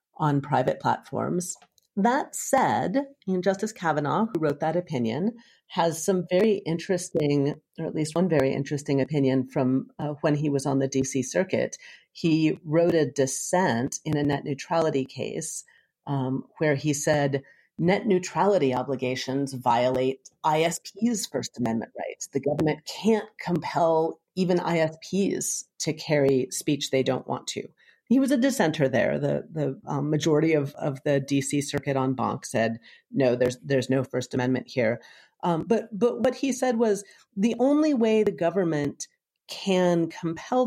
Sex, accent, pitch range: female, American, 140-185 Hz